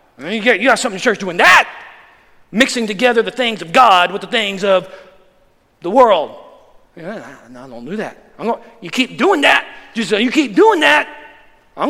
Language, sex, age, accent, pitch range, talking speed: English, male, 50-69, American, 220-335 Hz, 195 wpm